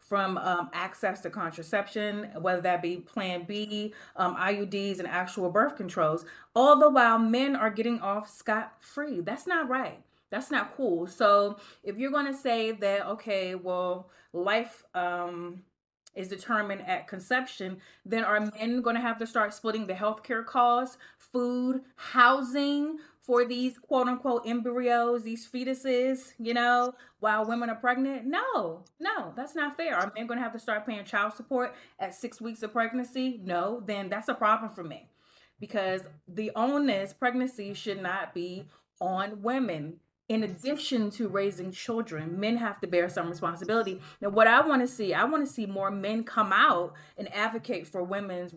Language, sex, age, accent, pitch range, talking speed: English, female, 30-49, American, 190-245 Hz, 165 wpm